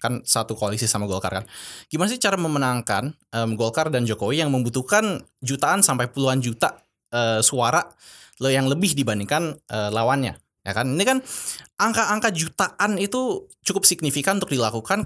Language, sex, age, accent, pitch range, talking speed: Indonesian, male, 20-39, native, 120-165 Hz, 155 wpm